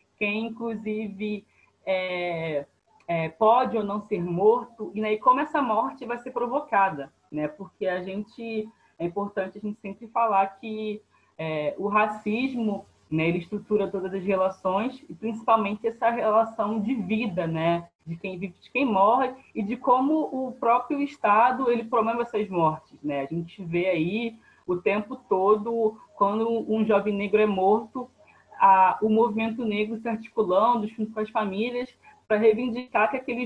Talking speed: 145 wpm